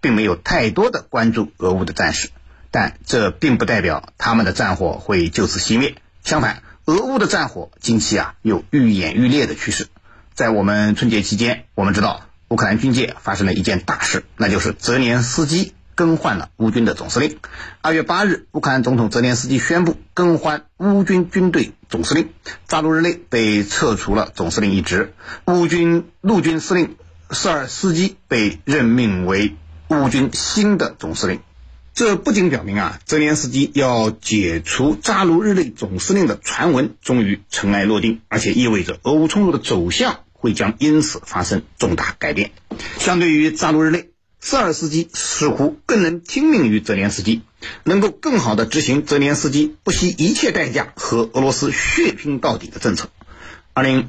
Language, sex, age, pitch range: Chinese, male, 50-69, 105-165 Hz